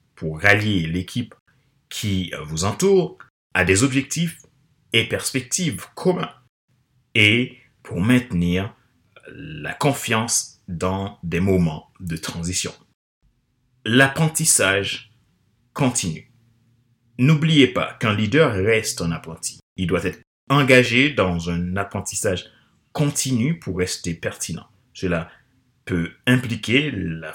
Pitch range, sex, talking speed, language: 90-135 Hz, male, 100 wpm, French